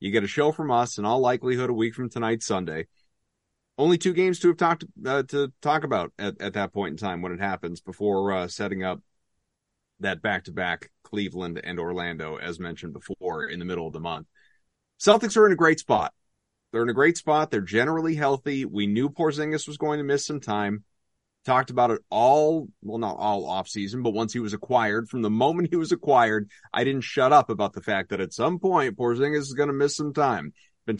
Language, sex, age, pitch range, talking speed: English, male, 30-49, 100-150 Hz, 225 wpm